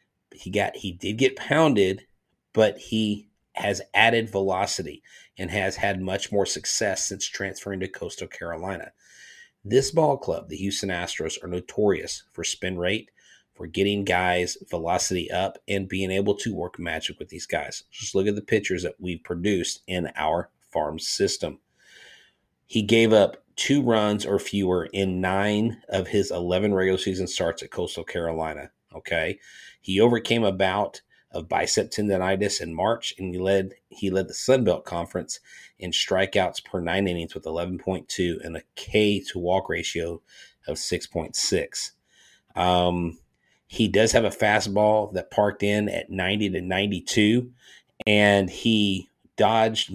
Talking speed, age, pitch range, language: 155 wpm, 30-49, 90-105 Hz, English